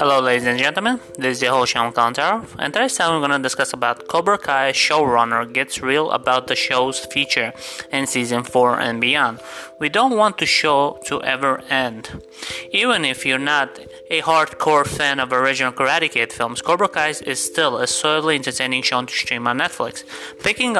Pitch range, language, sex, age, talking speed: 125-155 Hz, English, male, 30-49, 190 wpm